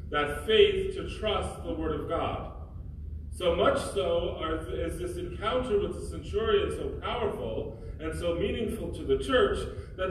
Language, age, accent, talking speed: English, 40-59, American, 155 wpm